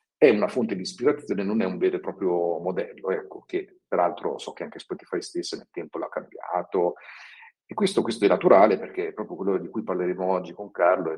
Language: Italian